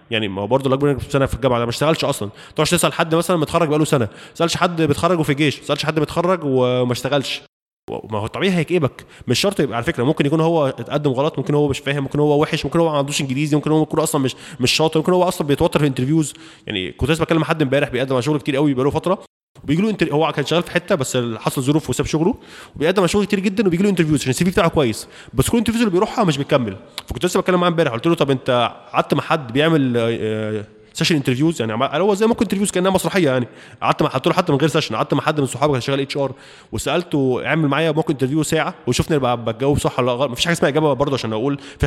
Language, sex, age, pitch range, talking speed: Arabic, male, 20-39, 130-165 Hz, 245 wpm